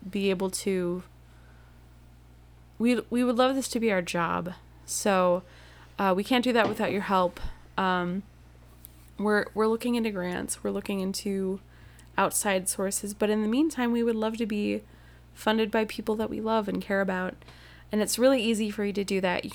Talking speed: 185 wpm